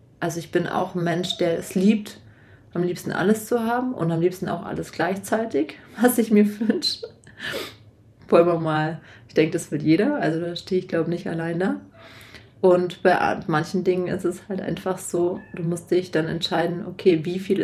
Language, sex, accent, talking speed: German, female, German, 195 wpm